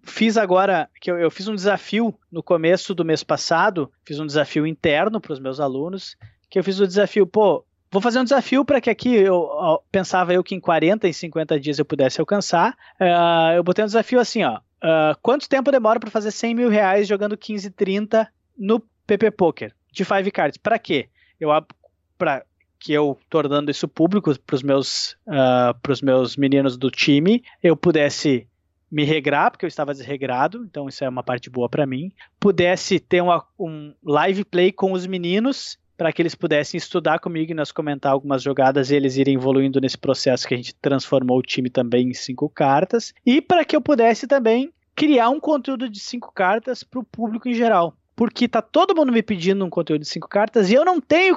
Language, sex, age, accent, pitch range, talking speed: Portuguese, male, 20-39, Brazilian, 150-225 Hz, 205 wpm